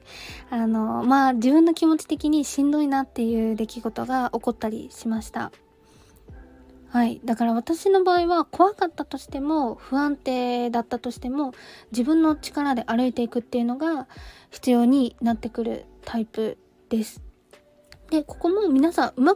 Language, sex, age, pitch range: Japanese, female, 20-39, 235-305 Hz